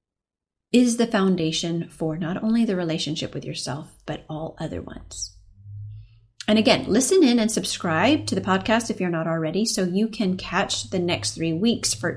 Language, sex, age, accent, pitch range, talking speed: English, female, 30-49, American, 155-215 Hz, 180 wpm